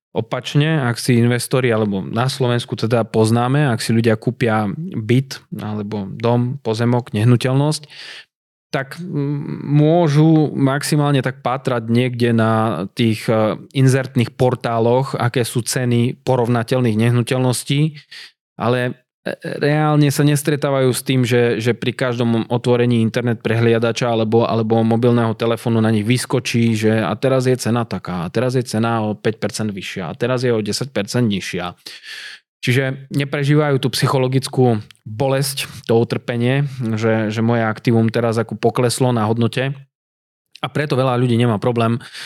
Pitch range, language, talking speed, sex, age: 115-130 Hz, Slovak, 135 wpm, male, 20-39